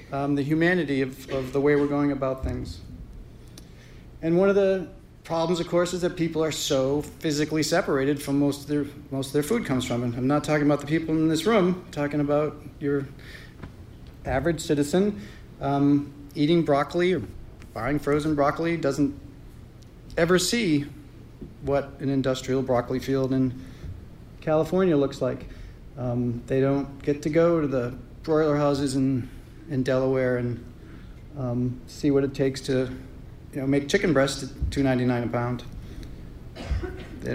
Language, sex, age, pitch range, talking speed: English, male, 40-59, 130-155 Hz, 160 wpm